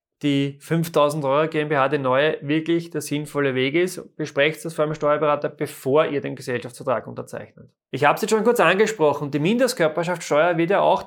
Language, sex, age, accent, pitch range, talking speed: German, male, 20-39, German, 140-180 Hz, 180 wpm